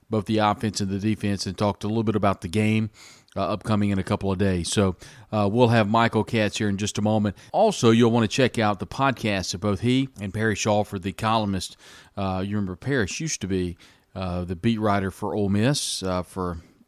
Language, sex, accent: English, male, American